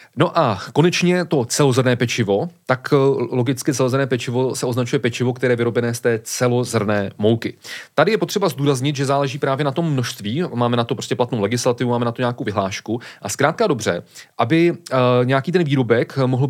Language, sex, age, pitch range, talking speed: Czech, male, 30-49, 115-145 Hz, 180 wpm